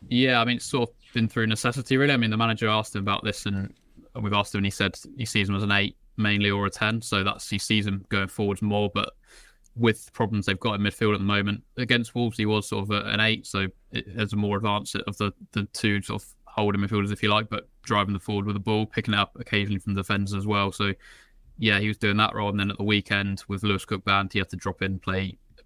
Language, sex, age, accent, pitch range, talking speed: English, male, 20-39, British, 95-105 Hz, 275 wpm